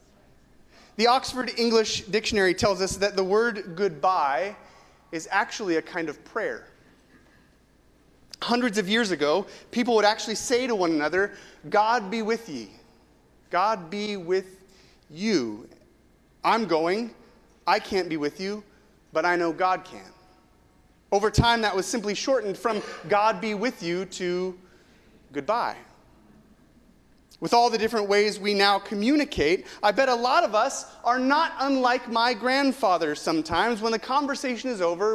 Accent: American